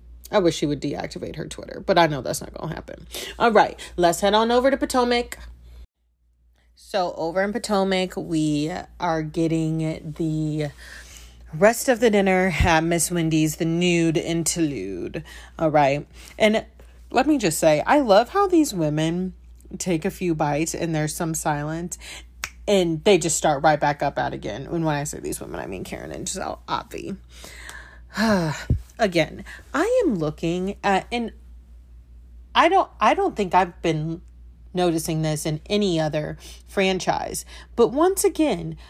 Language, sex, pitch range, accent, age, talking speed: English, female, 155-205 Hz, American, 30-49, 160 wpm